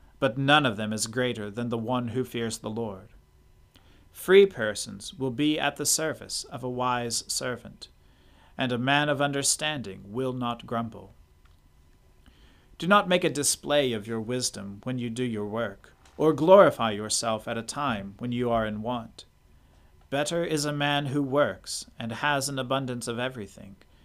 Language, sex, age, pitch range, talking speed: English, male, 40-59, 100-140 Hz, 170 wpm